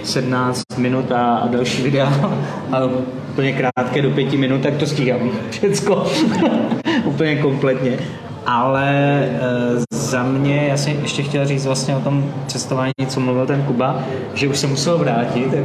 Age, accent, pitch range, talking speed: 30-49, native, 130-160 Hz, 150 wpm